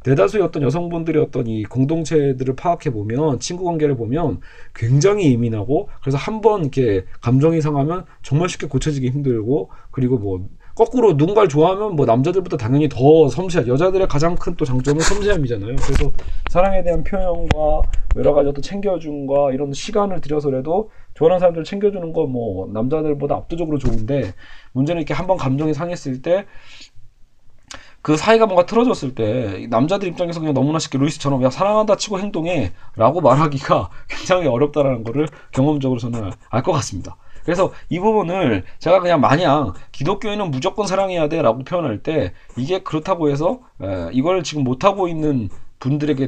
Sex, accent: male, native